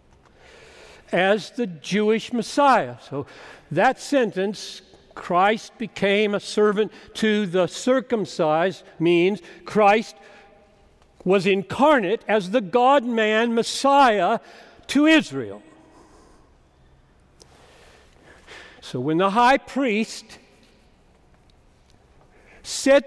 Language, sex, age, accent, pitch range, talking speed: English, male, 60-79, American, 155-240 Hz, 80 wpm